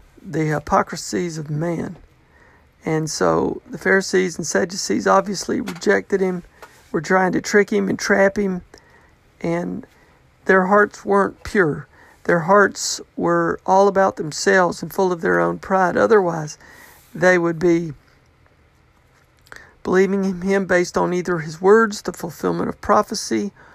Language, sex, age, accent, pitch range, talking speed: English, male, 50-69, American, 170-200 Hz, 135 wpm